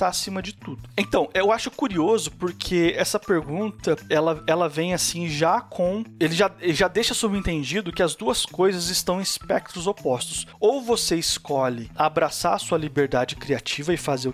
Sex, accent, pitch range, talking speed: male, Brazilian, 155-210 Hz, 165 wpm